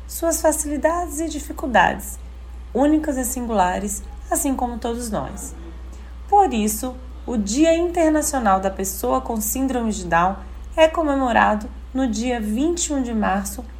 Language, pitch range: Portuguese, 195-285 Hz